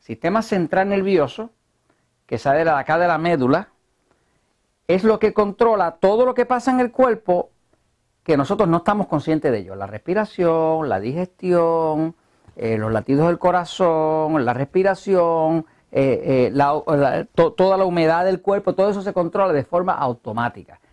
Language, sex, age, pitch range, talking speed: Spanish, male, 50-69, 125-195 Hz, 155 wpm